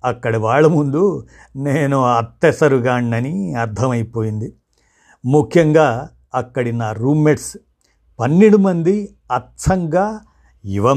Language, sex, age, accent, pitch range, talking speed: Telugu, male, 50-69, native, 115-150 Hz, 75 wpm